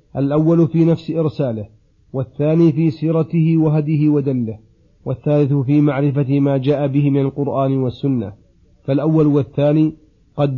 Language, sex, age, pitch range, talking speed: Arabic, male, 40-59, 140-155 Hz, 120 wpm